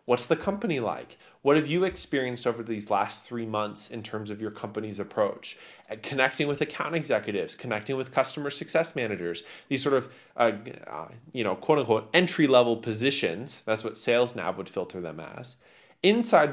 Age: 20-39